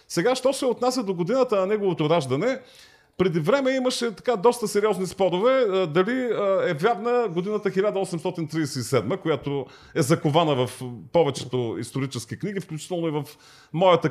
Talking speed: 135 wpm